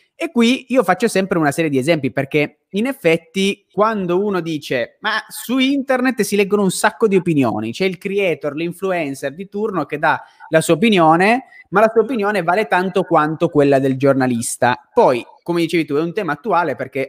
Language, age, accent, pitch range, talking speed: Italian, 20-39, native, 140-190 Hz, 190 wpm